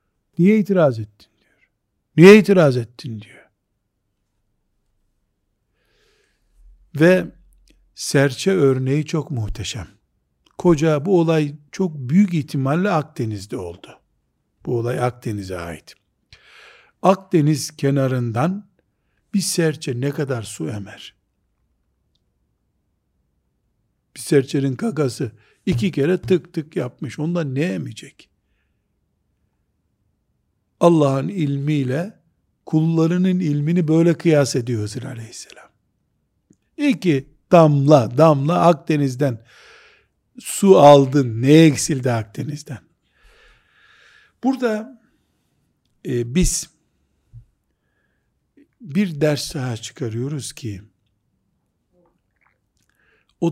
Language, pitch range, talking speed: Turkish, 115-165 Hz, 80 wpm